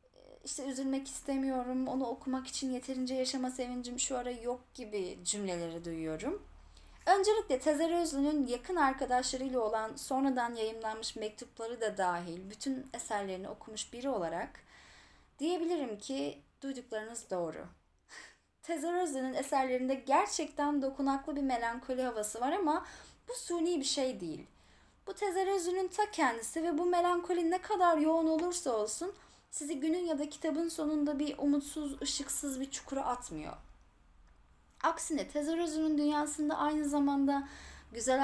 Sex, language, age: female, Turkish, 10-29